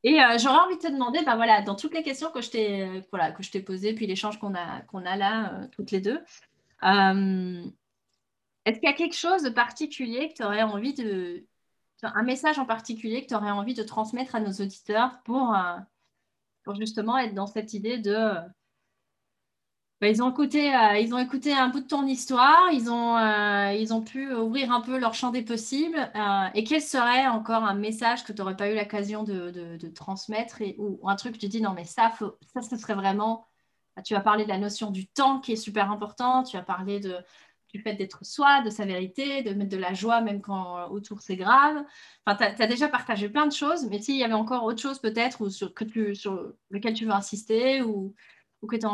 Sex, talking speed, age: female, 225 wpm, 30-49